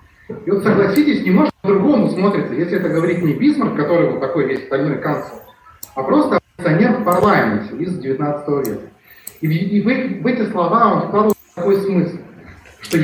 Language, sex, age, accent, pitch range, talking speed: Russian, male, 30-49, native, 160-215 Hz, 165 wpm